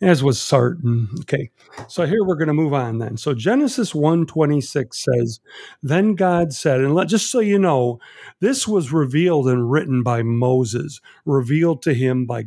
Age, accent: 50-69, American